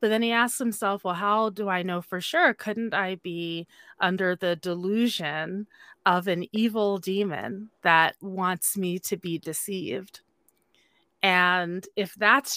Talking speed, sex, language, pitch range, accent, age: 150 wpm, female, English, 175-215 Hz, American, 30-49